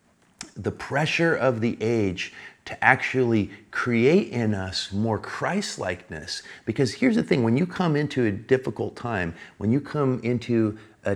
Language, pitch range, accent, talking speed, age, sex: English, 90-115 Hz, American, 150 wpm, 40-59, male